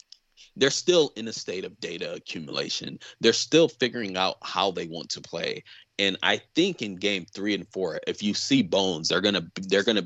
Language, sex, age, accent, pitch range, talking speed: English, male, 20-39, American, 90-110 Hz, 195 wpm